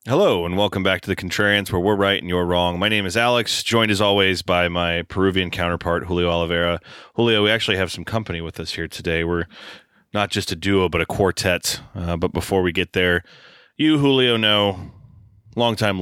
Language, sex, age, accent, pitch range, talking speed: English, male, 30-49, American, 85-100 Hz, 200 wpm